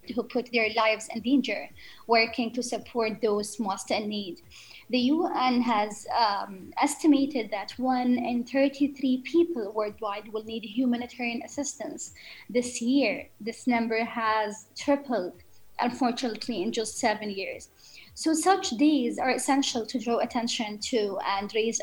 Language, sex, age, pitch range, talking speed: English, female, 20-39, 225-270 Hz, 135 wpm